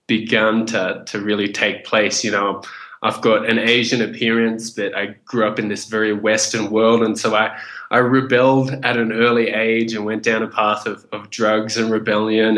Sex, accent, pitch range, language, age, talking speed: male, Australian, 110-125 Hz, English, 20-39, 195 wpm